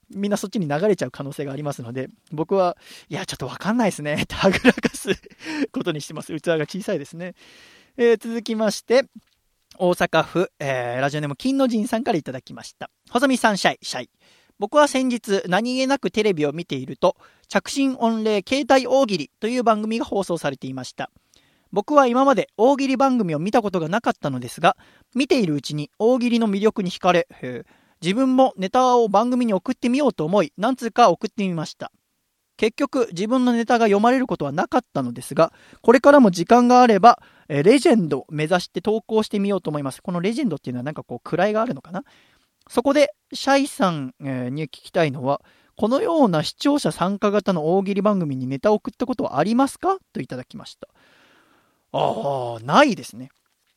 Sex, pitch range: male, 155-245 Hz